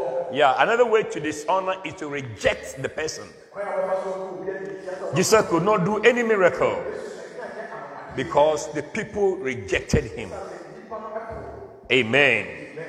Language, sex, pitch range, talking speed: English, male, 190-260 Hz, 100 wpm